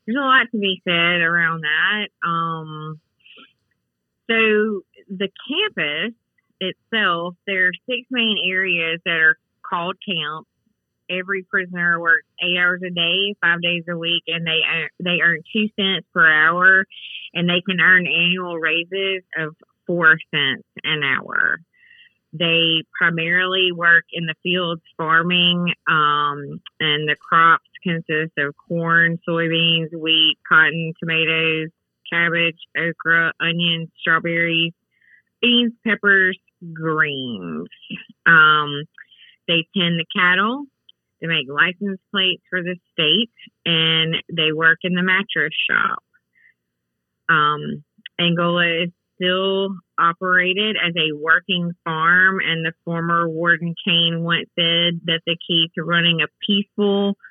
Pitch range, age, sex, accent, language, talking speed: 165-185 Hz, 30-49, female, American, English, 125 wpm